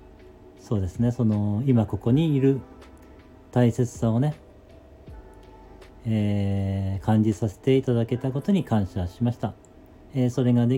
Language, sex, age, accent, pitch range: Japanese, male, 40-59, native, 105-125 Hz